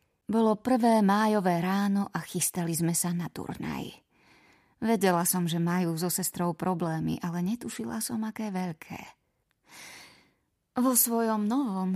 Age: 30-49